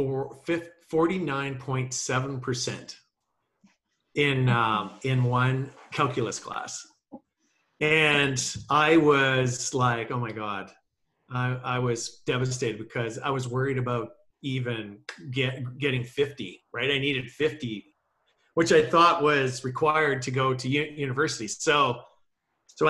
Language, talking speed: English, 115 wpm